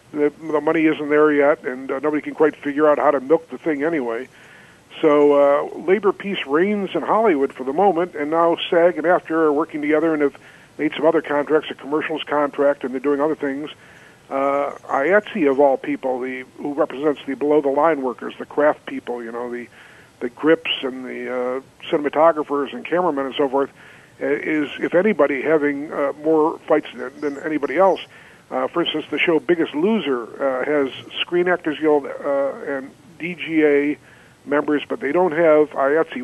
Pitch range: 140-160 Hz